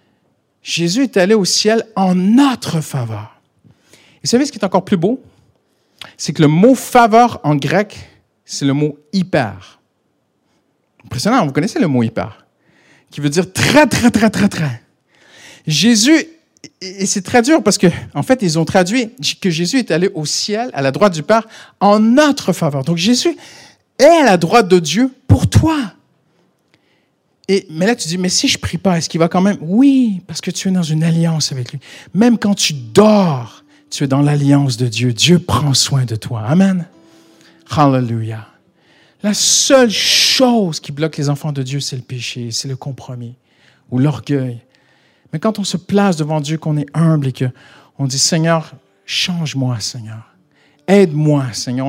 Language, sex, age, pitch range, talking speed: French, male, 50-69, 140-200 Hz, 190 wpm